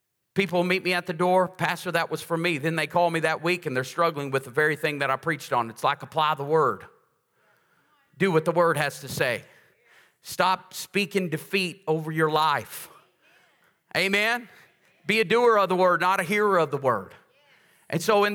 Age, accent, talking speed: 40-59, American, 205 wpm